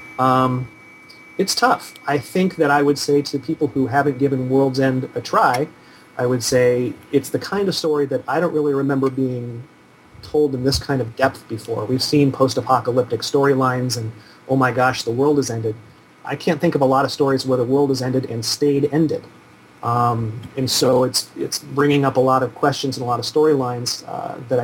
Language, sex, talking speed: English, male, 205 wpm